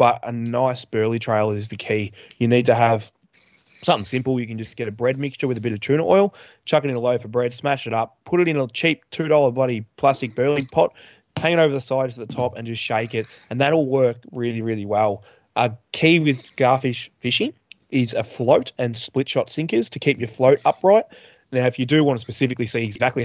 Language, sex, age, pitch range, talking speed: English, male, 20-39, 115-140 Hz, 235 wpm